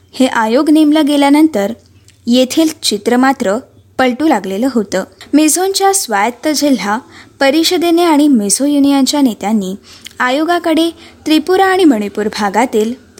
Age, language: 20-39, Marathi